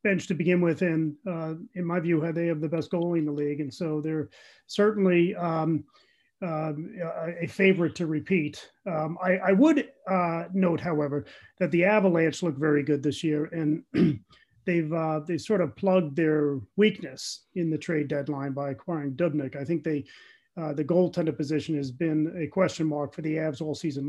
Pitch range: 150-180 Hz